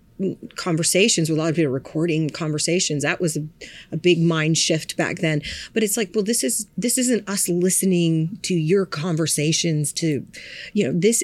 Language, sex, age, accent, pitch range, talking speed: English, female, 40-59, American, 165-195 Hz, 180 wpm